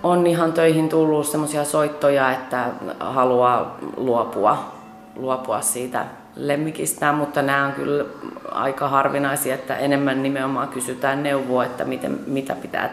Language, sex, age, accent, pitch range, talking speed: Finnish, female, 30-49, native, 130-160 Hz, 120 wpm